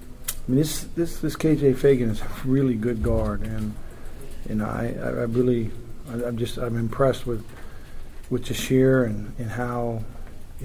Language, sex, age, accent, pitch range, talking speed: English, male, 50-69, American, 110-125 Hz, 175 wpm